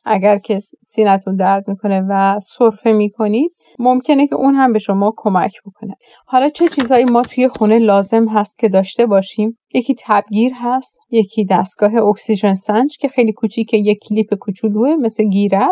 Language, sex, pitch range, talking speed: Persian, female, 195-225 Hz, 165 wpm